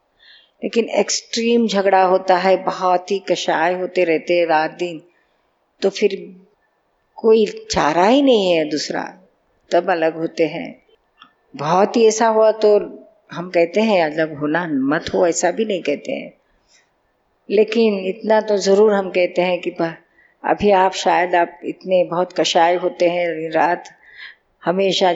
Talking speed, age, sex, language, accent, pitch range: 145 wpm, 50-69, female, Hindi, native, 165-200 Hz